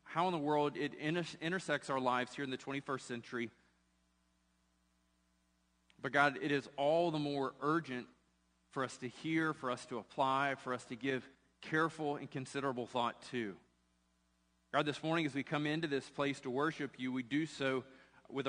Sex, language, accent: male, English, American